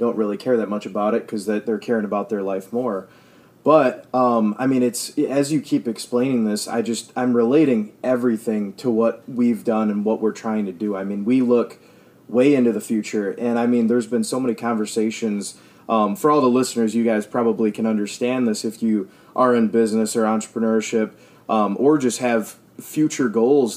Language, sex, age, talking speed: English, male, 20-39, 200 wpm